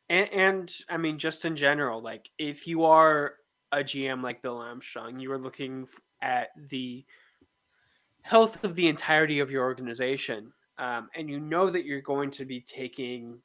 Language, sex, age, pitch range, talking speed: English, male, 20-39, 130-165 Hz, 170 wpm